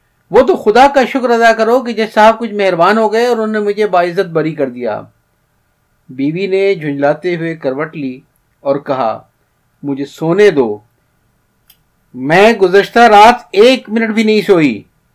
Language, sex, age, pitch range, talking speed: Urdu, male, 50-69, 165-230 Hz, 165 wpm